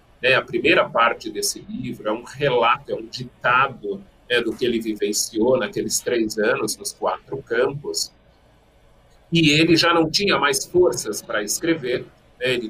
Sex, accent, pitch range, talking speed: male, Brazilian, 125-190 Hz, 165 wpm